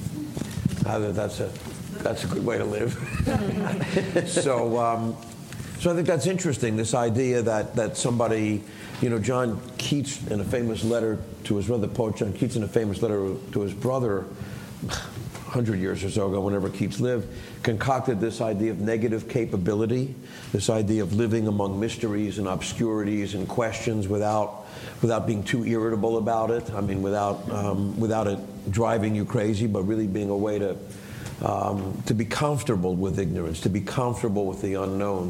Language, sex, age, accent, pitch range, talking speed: English, male, 50-69, American, 100-120 Hz, 170 wpm